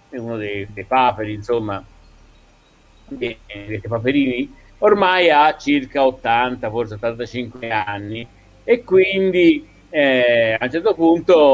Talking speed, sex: 115 wpm, male